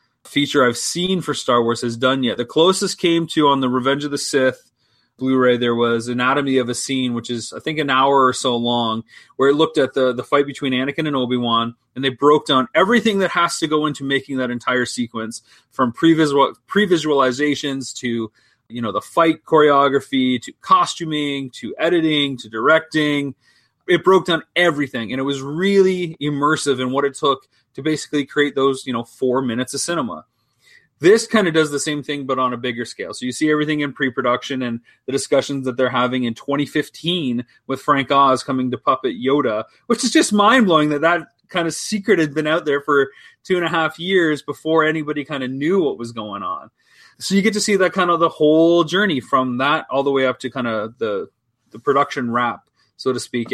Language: English